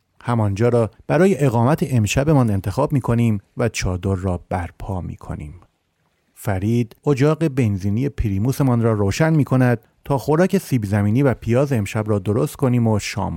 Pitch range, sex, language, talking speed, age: 105-145 Hz, male, Persian, 140 wpm, 30-49